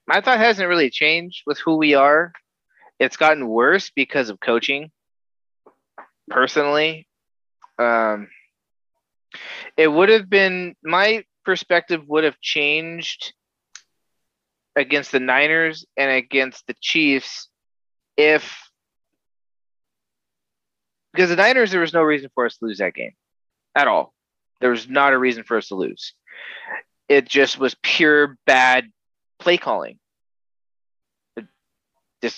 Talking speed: 120 wpm